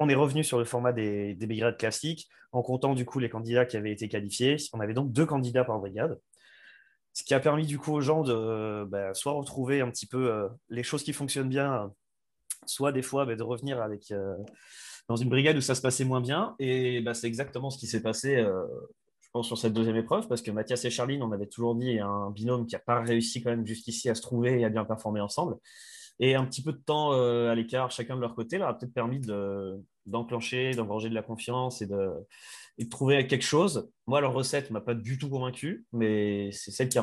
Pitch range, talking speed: 110-130 Hz, 250 wpm